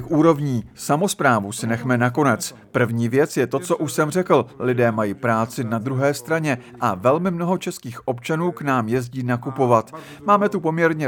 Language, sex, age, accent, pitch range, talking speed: Czech, male, 50-69, native, 120-150 Hz, 170 wpm